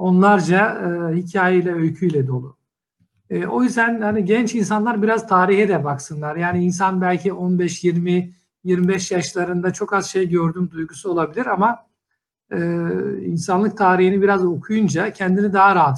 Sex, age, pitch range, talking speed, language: male, 60-79, 165-200 Hz, 130 wpm, Turkish